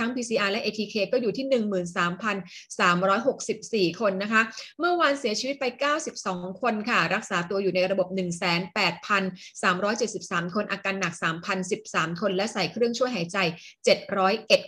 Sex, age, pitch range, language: female, 30-49, 195-245 Hz, Thai